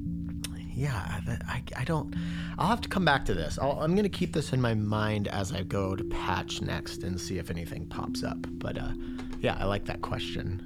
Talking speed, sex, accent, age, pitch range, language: 220 wpm, male, American, 40-59, 90-145 Hz, English